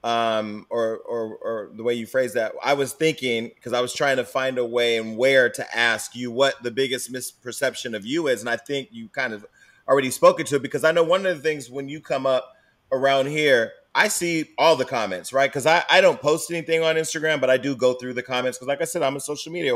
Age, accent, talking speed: 30-49, American, 255 wpm